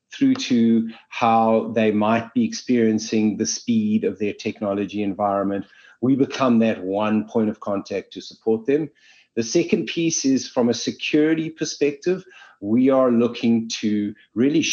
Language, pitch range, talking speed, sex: English, 110-155 Hz, 145 wpm, male